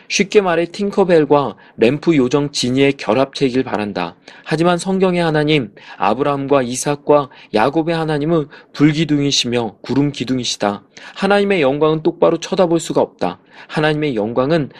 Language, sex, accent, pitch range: Korean, male, native, 130-170 Hz